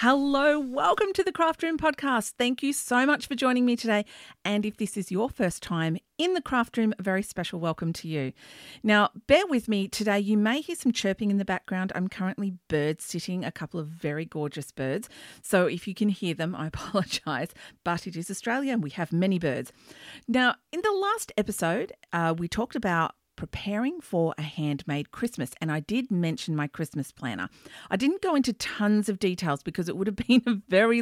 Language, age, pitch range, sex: English, 40-59, 160-235 Hz, female